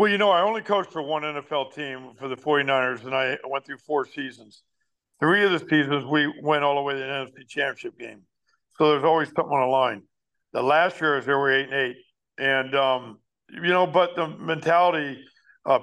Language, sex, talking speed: English, male, 215 wpm